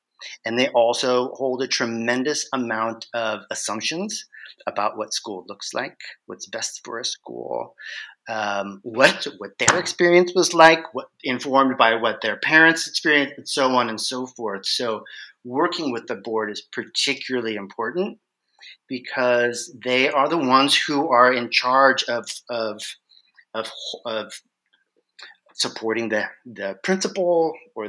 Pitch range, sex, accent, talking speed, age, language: 110-140 Hz, male, American, 140 wpm, 40-59, English